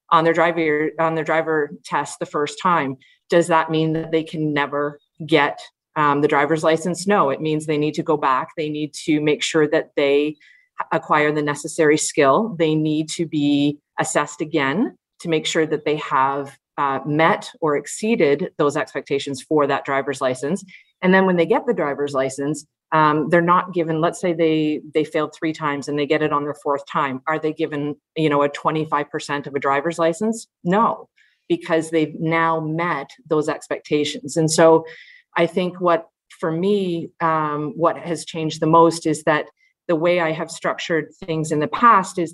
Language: English